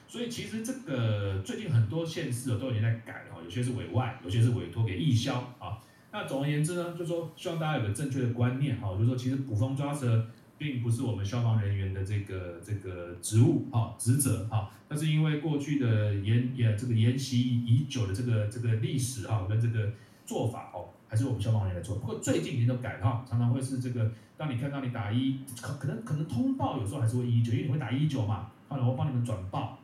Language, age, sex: English, 30-49, male